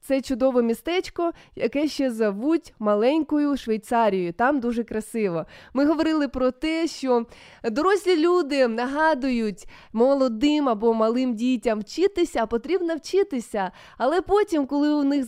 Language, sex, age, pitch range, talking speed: Ukrainian, female, 20-39, 230-300 Hz, 125 wpm